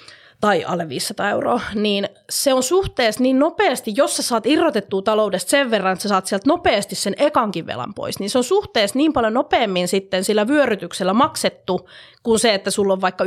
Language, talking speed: Finnish, 195 wpm